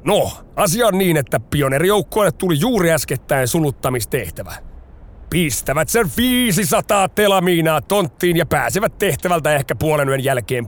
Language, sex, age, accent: Finnish, male, 30-49, native